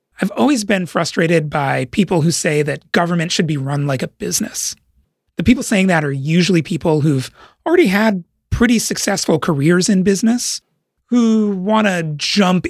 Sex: male